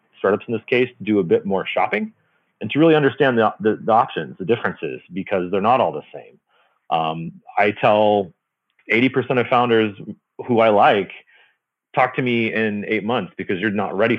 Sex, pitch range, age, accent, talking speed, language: male, 90-110 Hz, 30-49, American, 185 wpm, English